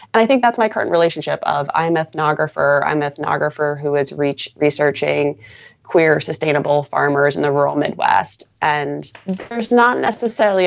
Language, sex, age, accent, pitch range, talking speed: English, female, 20-39, American, 145-170 Hz, 145 wpm